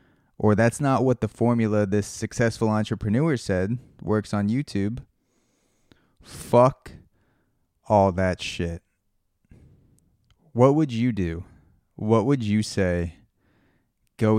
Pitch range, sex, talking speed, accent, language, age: 95-115 Hz, male, 110 wpm, American, English, 20-39